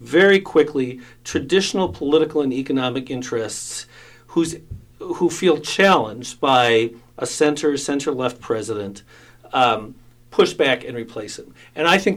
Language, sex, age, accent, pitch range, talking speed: English, male, 50-69, American, 125-160 Hz, 125 wpm